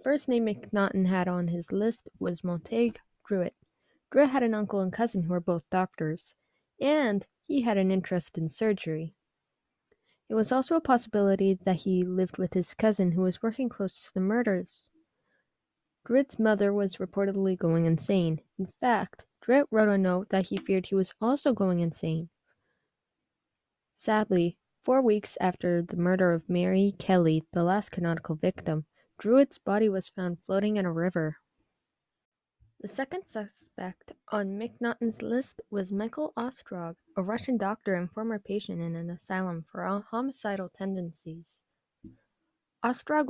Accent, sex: American, female